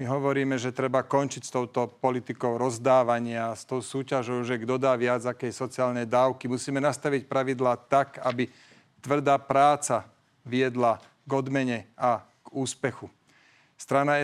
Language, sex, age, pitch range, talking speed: Slovak, male, 40-59, 125-145 Hz, 140 wpm